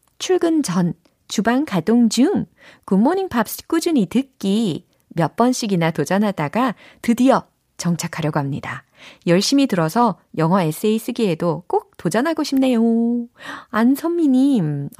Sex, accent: female, native